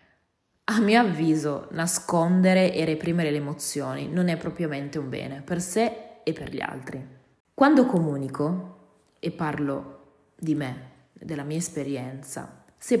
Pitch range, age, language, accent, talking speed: 150-190 Hz, 20-39, Italian, native, 135 wpm